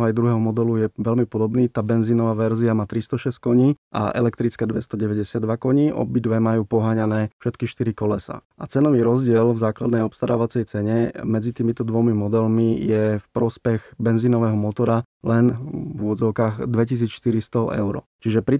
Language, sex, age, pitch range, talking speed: Slovak, male, 20-39, 110-125 Hz, 150 wpm